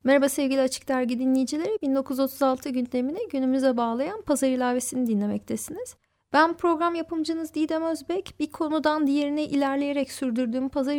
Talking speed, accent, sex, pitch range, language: 125 wpm, native, female, 265-335 Hz, Turkish